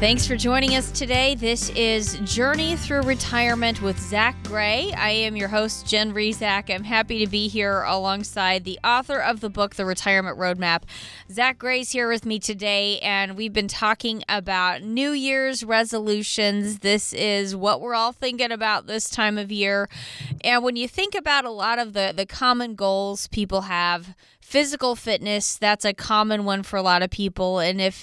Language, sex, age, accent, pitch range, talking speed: English, female, 20-39, American, 200-255 Hz, 185 wpm